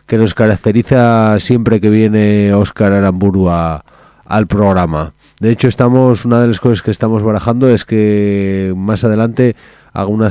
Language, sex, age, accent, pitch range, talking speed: Spanish, male, 30-49, Spanish, 95-110 Hz, 155 wpm